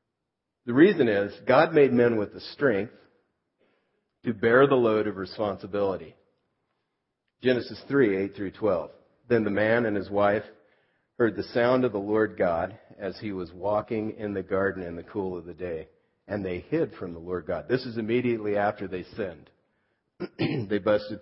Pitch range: 95-120 Hz